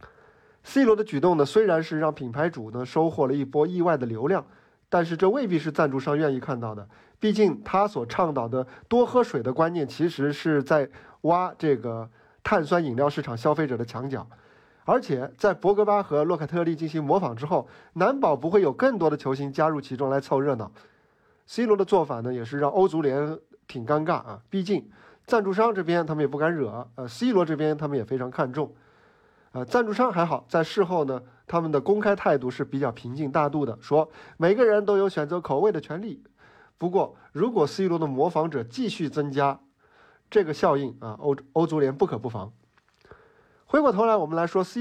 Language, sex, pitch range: Chinese, male, 140-190 Hz